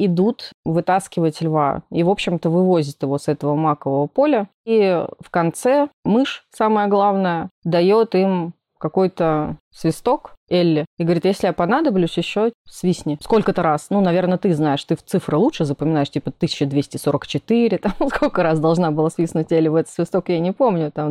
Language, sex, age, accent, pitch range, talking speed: Russian, female, 20-39, native, 155-190 Hz, 160 wpm